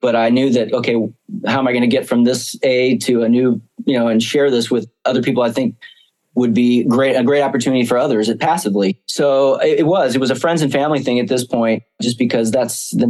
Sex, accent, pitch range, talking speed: male, American, 115-135 Hz, 245 wpm